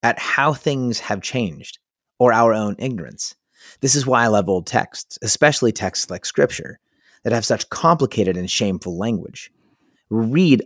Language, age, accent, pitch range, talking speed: English, 30-49, American, 95-125 Hz, 165 wpm